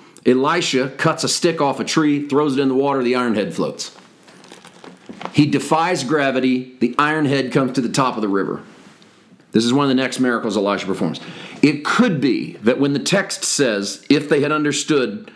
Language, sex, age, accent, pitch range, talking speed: English, male, 40-59, American, 115-150 Hz, 195 wpm